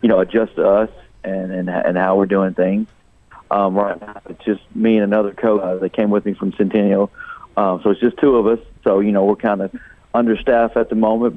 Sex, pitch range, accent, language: male, 100-110 Hz, American, English